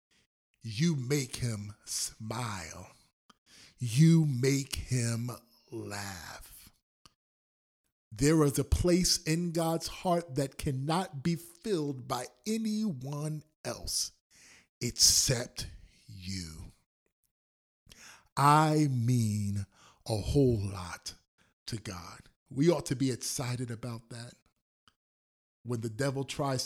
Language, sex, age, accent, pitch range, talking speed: English, male, 50-69, American, 105-145 Hz, 95 wpm